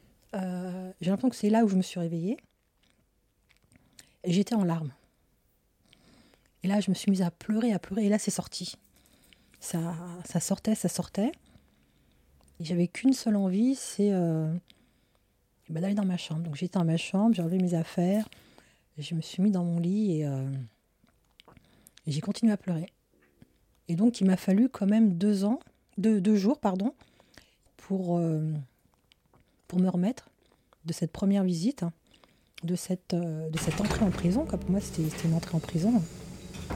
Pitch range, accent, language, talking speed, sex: 160-195 Hz, French, French, 170 wpm, female